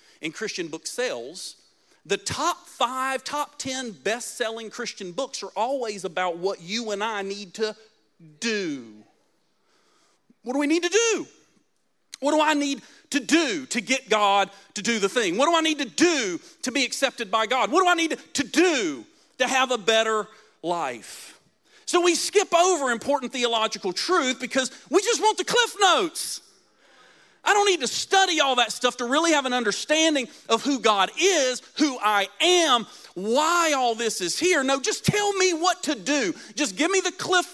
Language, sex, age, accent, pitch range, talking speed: English, male, 40-59, American, 215-325 Hz, 180 wpm